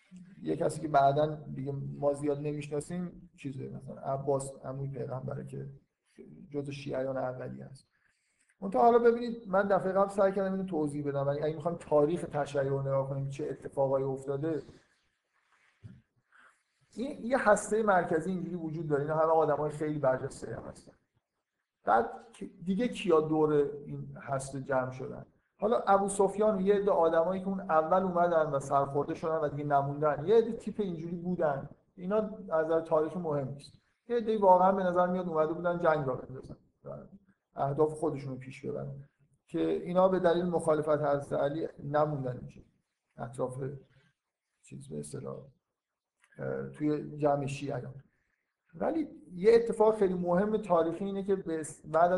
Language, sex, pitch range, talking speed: Persian, male, 140-185 Hz, 145 wpm